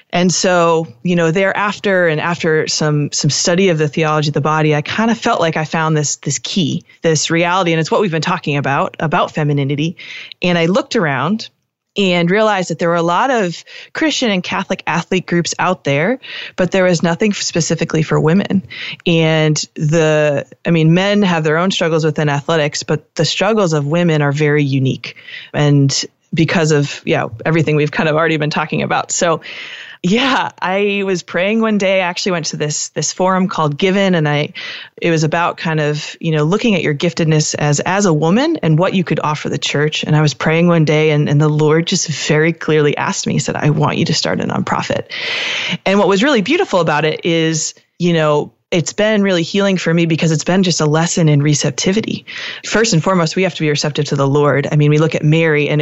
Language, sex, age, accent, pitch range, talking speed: English, female, 20-39, American, 155-185 Hz, 215 wpm